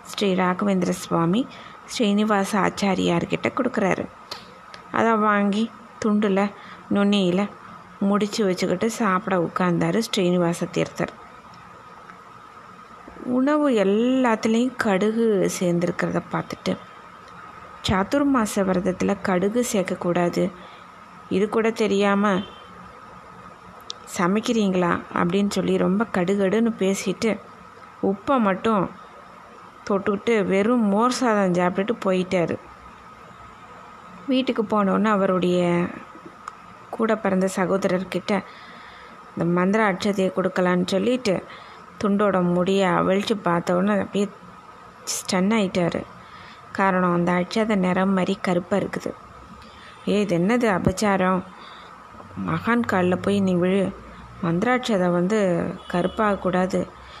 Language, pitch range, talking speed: Tamil, 185-215 Hz, 85 wpm